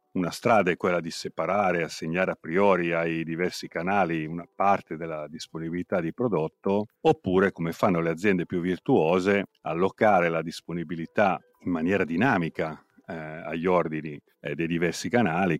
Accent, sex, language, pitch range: native, male, Italian, 80-95 Hz